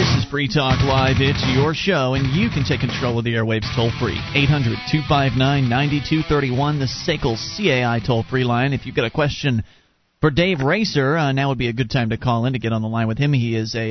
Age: 30-49